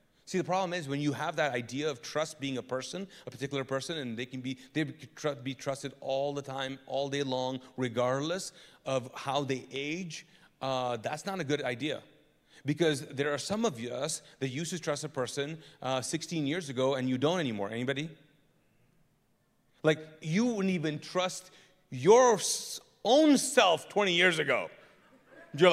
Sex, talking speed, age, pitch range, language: male, 175 wpm, 30-49, 140-195 Hz, English